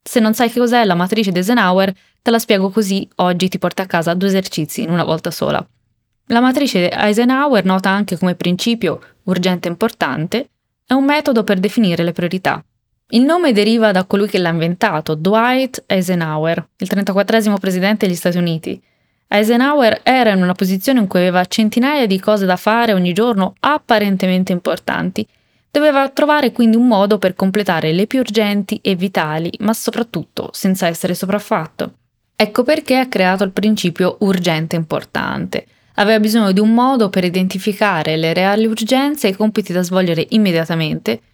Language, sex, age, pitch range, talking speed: Italian, female, 20-39, 180-225 Hz, 170 wpm